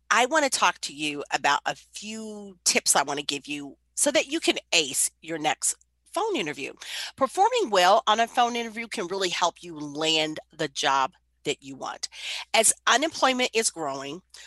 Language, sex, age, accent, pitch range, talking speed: English, female, 40-59, American, 165-245 Hz, 185 wpm